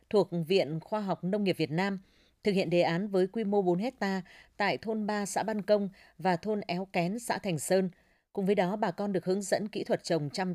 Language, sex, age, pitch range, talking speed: Vietnamese, female, 20-39, 170-215 Hz, 240 wpm